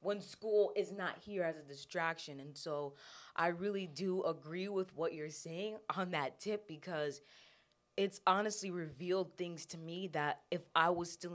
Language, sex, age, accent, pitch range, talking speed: English, female, 20-39, American, 155-190 Hz, 175 wpm